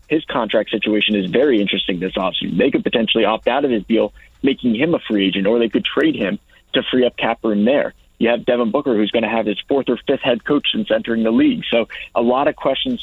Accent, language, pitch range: American, English, 110-125 Hz